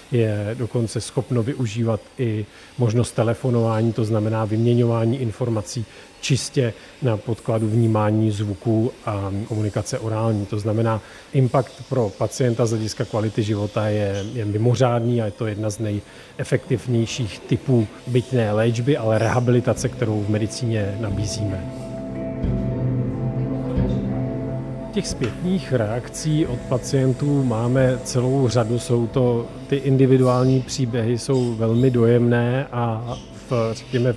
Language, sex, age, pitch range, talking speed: Czech, male, 40-59, 110-130 Hz, 110 wpm